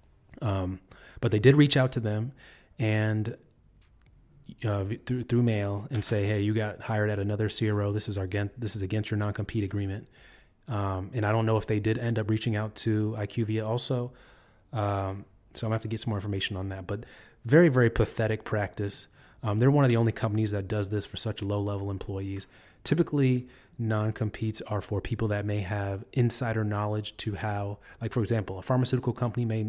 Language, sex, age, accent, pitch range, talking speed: English, male, 30-49, American, 100-115 Hz, 195 wpm